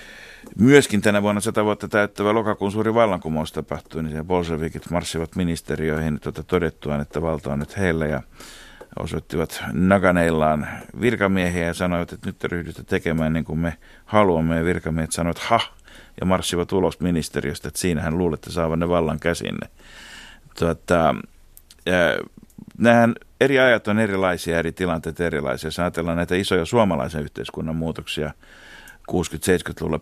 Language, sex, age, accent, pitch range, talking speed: Finnish, male, 50-69, native, 80-95 Hz, 135 wpm